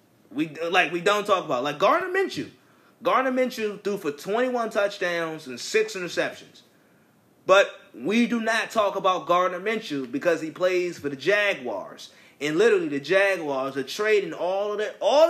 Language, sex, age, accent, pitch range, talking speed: English, male, 30-49, American, 155-210 Hz, 175 wpm